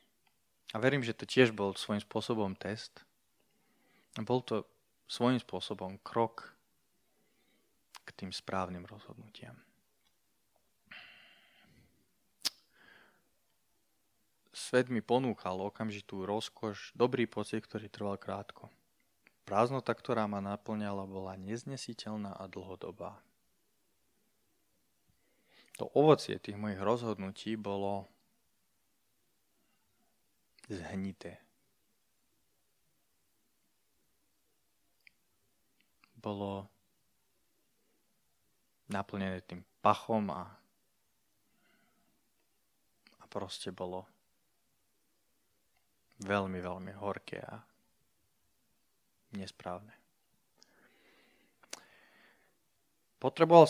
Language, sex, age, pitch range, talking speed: Slovak, male, 20-39, 95-115 Hz, 65 wpm